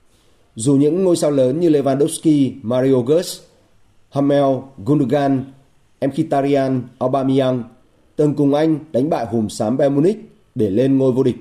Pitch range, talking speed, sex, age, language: 120-155 Hz, 140 wpm, male, 30-49, Vietnamese